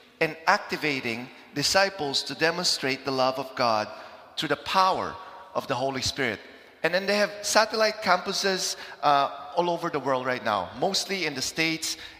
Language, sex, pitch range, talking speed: English, male, 150-210 Hz, 160 wpm